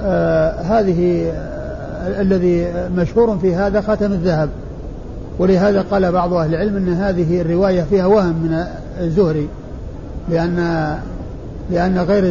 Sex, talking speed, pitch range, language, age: male, 110 wpm, 170-205 Hz, Arabic, 50-69